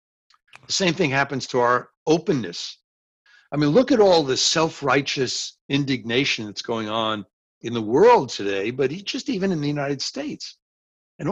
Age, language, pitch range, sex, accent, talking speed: 60-79, English, 110-140 Hz, male, American, 160 wpm